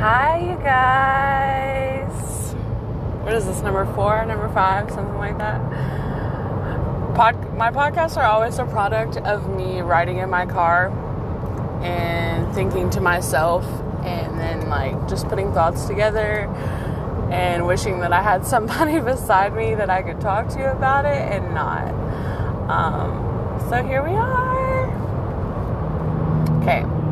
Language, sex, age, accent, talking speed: English, female, 20-39, American, 130 wpm